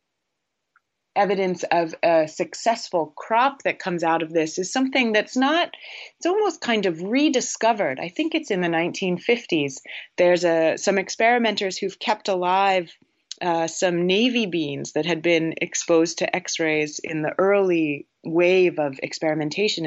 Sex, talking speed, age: female, 140 wpm, 30-49